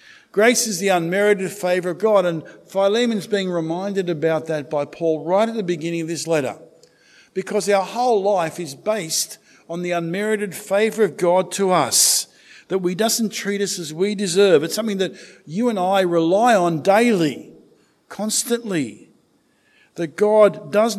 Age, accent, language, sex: 50-69, Australian, English, male